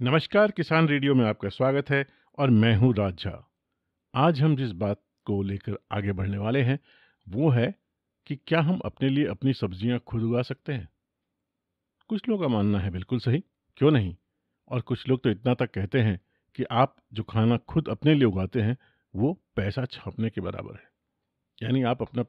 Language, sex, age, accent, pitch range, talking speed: Hindi, male, 50-69, native, 105-135 Hz, 185 wpm